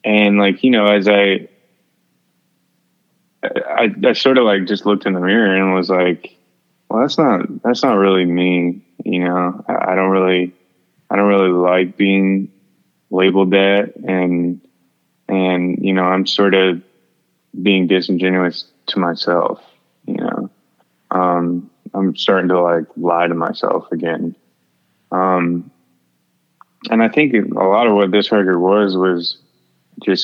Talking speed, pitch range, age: 145 wpm, 90-95 Hz, 20-39